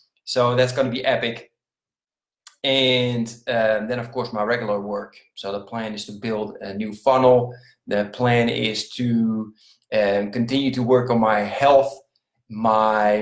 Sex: male